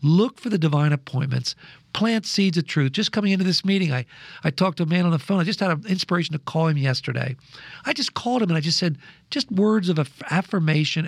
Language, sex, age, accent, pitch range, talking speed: English, male, 50-69, American, 145-185 Hz, 240 wpm